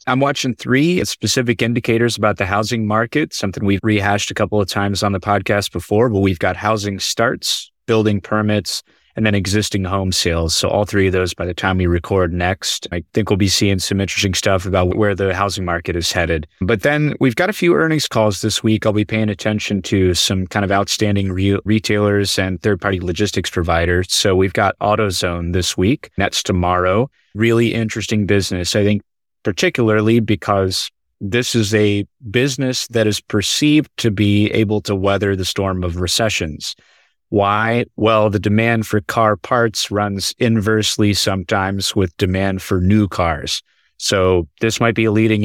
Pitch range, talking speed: 95-110 Hz, 175 wpm